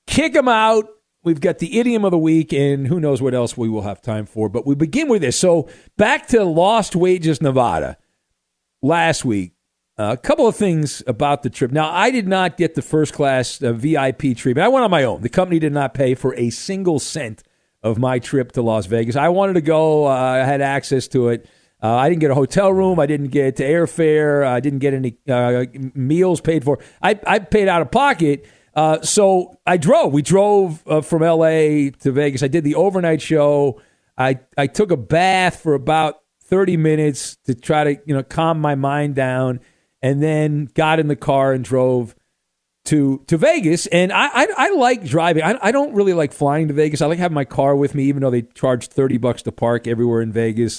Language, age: English, 50-69